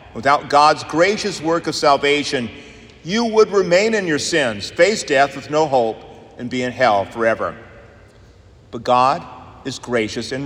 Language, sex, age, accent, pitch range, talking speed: English, male, 50-69, American, 120-175 Hz, 155 wpm